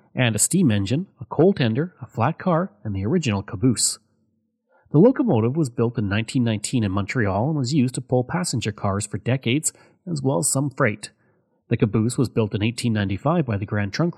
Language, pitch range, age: English, 110-150 Hz, 30-49